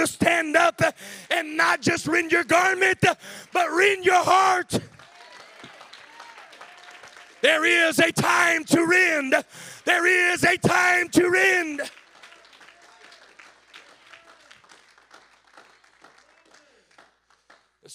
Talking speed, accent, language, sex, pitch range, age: 85 wpm, American, English, male, 250-290 Hz, 40-59